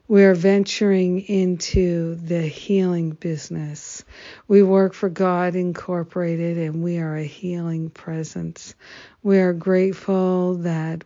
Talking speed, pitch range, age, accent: 120 wpm, 170-190 Hz, 60-79, American